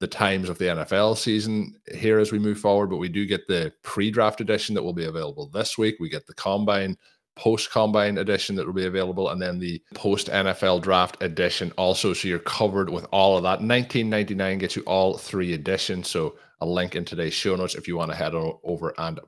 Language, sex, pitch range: English, male, 85-105 Hz